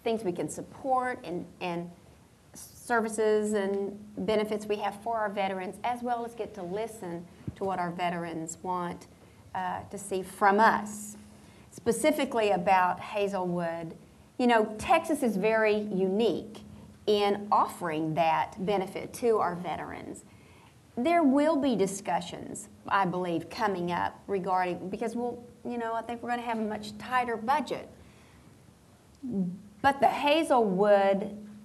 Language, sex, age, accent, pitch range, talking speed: English, female, 40-59, American, 185-230 Hz, 140 wpm